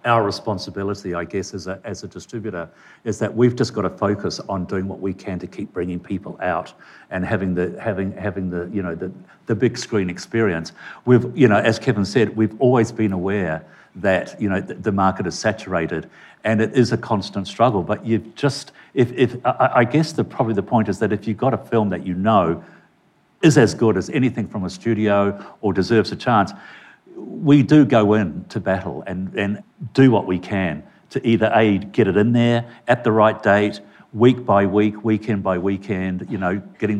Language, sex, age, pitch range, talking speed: English, male, 60-79, 95-115 Hz, 205 wpm